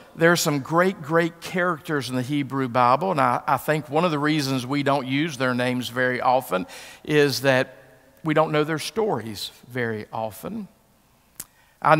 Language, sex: English, male